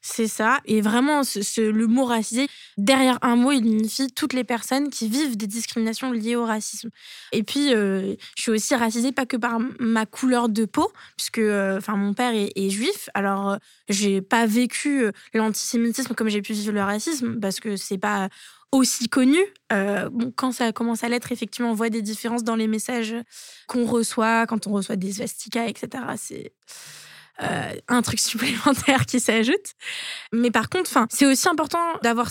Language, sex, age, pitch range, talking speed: French, female, 20-39, 220-260 Hz, 190 wpm